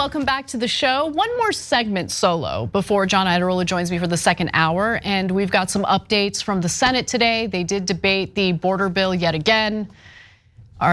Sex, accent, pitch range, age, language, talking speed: female, American, 185-275 Hz, 30-49, English, 200 wpm